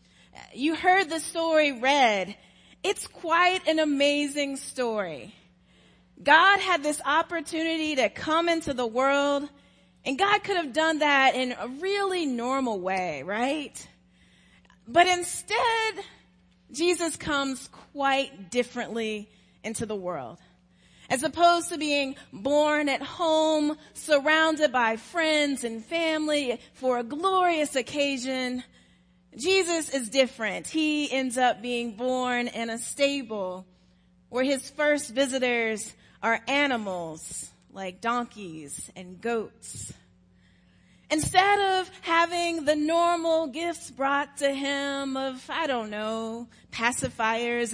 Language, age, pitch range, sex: English, 30-49, 225-320 Hz, female